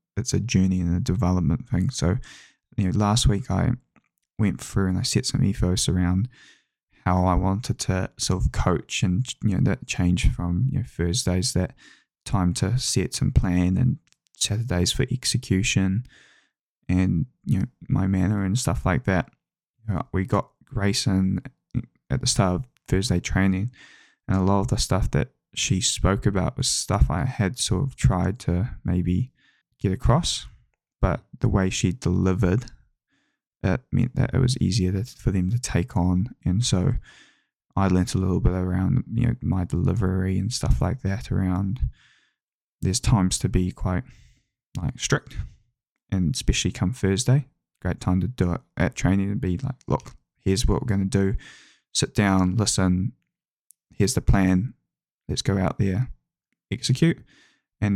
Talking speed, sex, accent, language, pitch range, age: 165 wpm, male, Australian, English, 90-115 Hz, 10-29